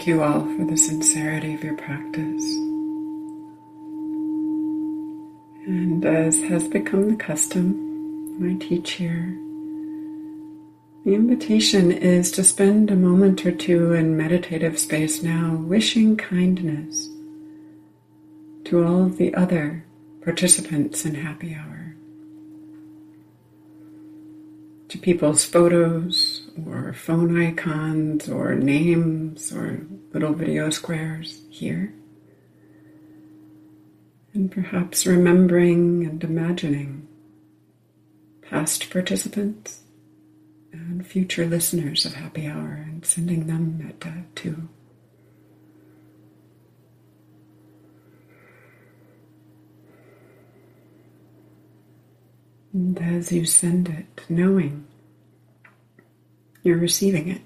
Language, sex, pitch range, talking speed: English, female, 155-195 Hz, 85 wpm